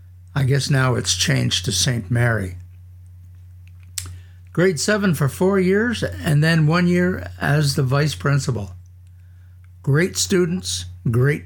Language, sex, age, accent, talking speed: English, male, 60-79, American, 125 wpm